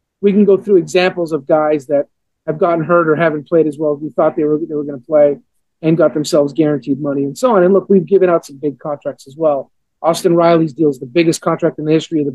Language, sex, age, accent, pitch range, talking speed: English, male, 40-59, American, 150-180 Hz, 260 wpm